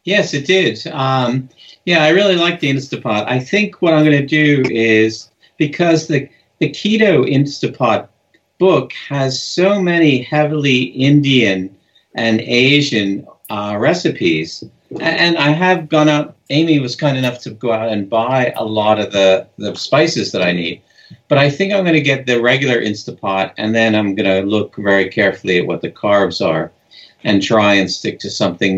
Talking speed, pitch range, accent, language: 175 wpm, 95-140 Hz, American, English